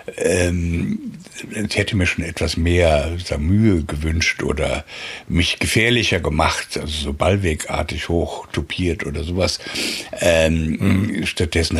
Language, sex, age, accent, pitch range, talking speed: German, male, 60-79, German, 80-95 Hz, 110 wpm